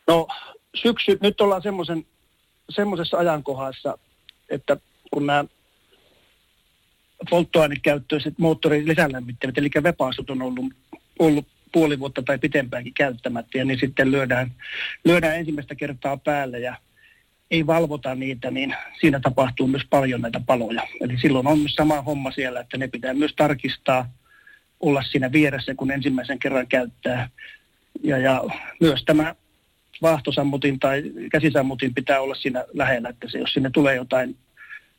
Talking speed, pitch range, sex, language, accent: 130 wpm, 130-155 Hz, male, Finnish, native